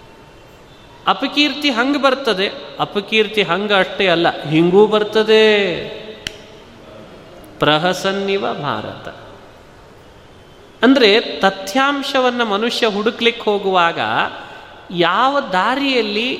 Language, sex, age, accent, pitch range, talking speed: Kannada, male, 30-49, native, 190-265 Hz, 65 wpm